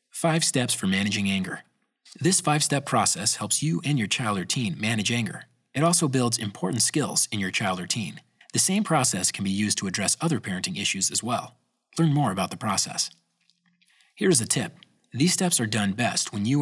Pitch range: 105-160 Hz